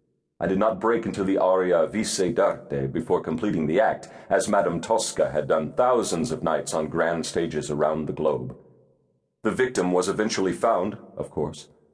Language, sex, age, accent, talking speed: English, male, 50-69, American, 170 wpm